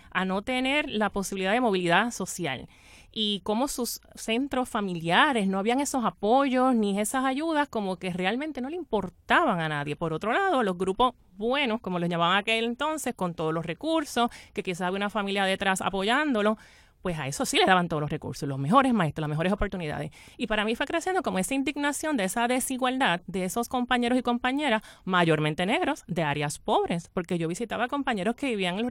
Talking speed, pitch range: 195 wpm, 185-250 Hz